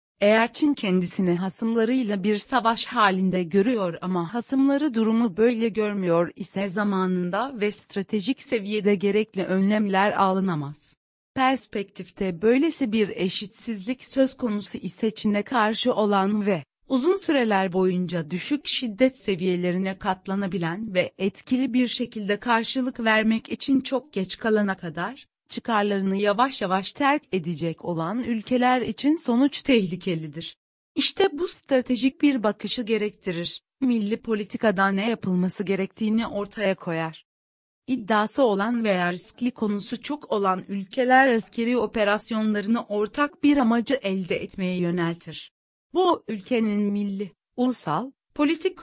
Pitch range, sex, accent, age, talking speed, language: 190-245 Hz, female, native, 40-59, 115 wpm, Turkish